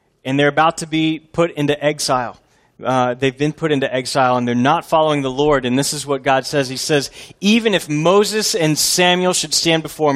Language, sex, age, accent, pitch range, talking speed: English, male, 30-49, American, 125-175 Hz, 215 wpm